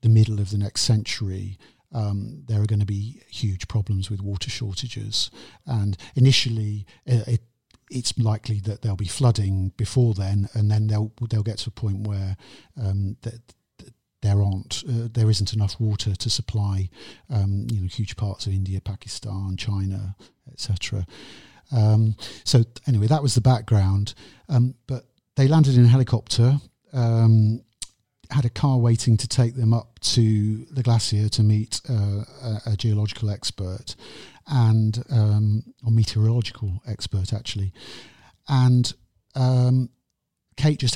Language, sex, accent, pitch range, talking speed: English, male, British, 100-120 Hz, 150 wpm